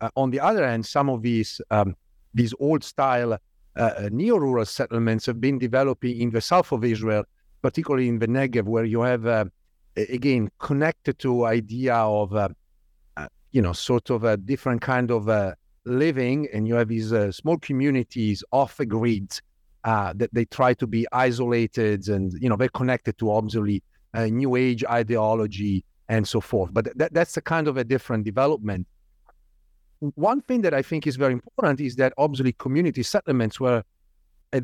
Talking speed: 180 wpm